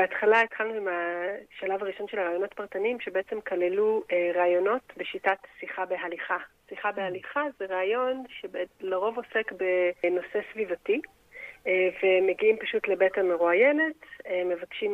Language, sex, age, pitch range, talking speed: Hebrew, female, 40-59, 180-245 Hz, 110 wpm